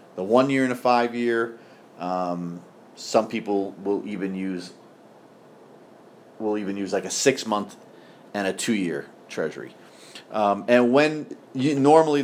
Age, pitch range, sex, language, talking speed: 30-49, 100-120 Hz, male, English, 145 wpm